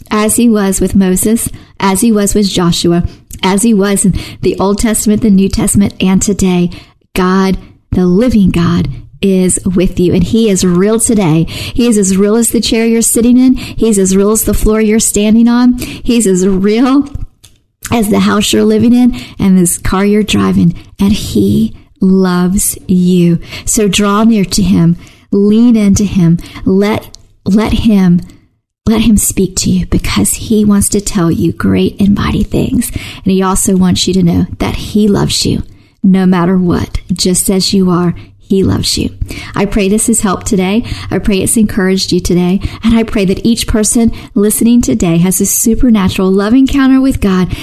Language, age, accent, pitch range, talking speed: English, 40-59, American, 180-215 Hz, 185 wpm